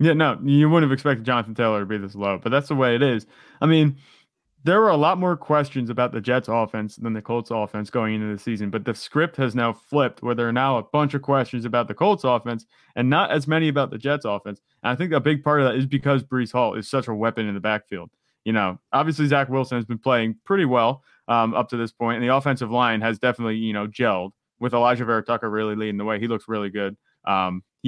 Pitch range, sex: 110-135 Hz, male